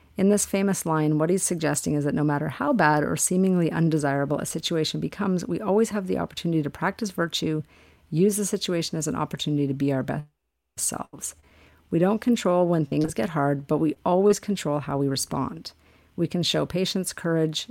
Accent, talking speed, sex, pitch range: American, 195 wpm, female, 145-175 Hz